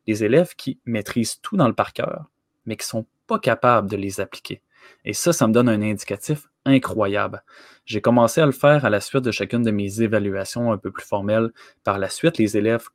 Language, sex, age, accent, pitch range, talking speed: French, male, 20-39, Canadian, 105-135 Hz, 220 wpm